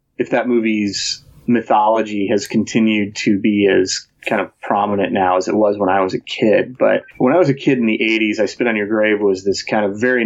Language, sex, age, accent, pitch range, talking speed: English, male, 30-49, American, 105-115 Hz, 235 wpm